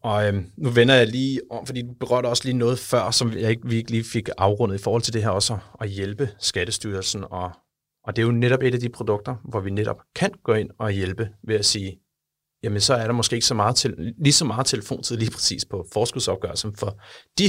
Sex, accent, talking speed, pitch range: male, Danish, 245 wpm, 100-120 Hz